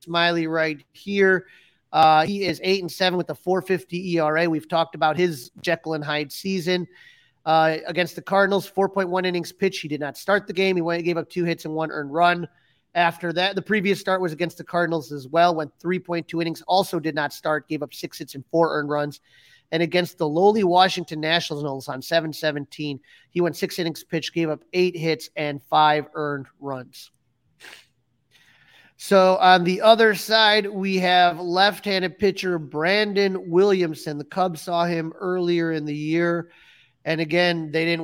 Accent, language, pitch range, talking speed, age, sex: American, English, 155-185 Hz, 180 wpm, 30-49, male